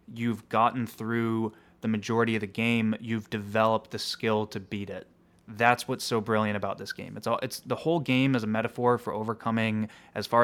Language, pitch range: English, 110-130 Hz